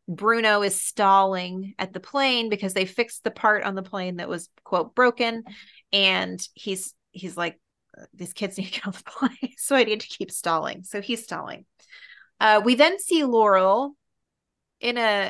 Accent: American